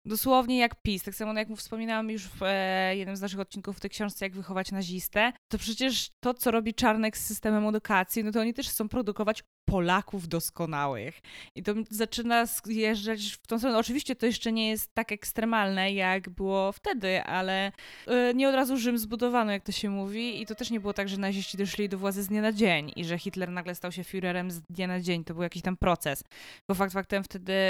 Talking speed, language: 220 wpm, Polish